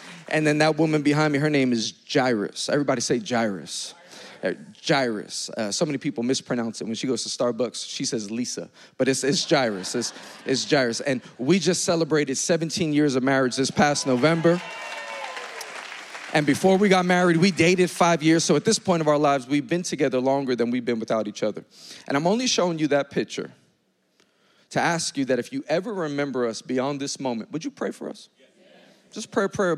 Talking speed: 200 wpm